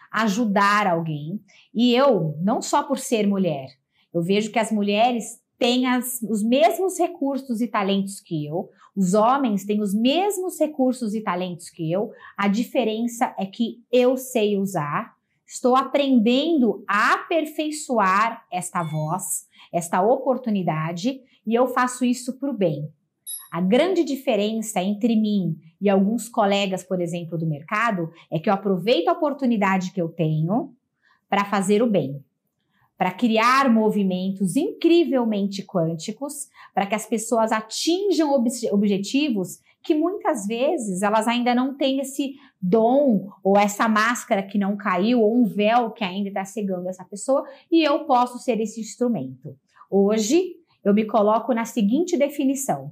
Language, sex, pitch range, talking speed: Portuguese, female, 195-255 Hz, 145 wpm